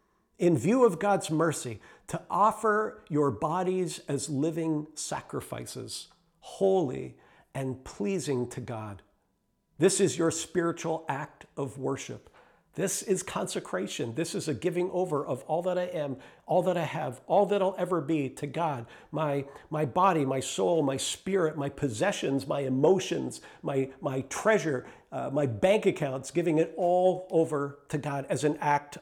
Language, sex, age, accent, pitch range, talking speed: English, male, 50-69, American, 145-185 Hz, 155 wpm